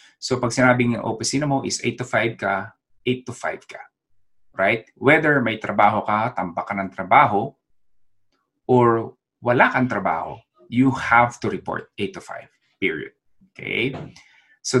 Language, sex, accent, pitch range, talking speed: English, male, Filipino, 105-130 Hz, 150 wpm